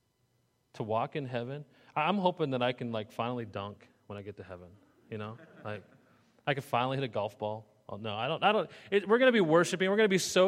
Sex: male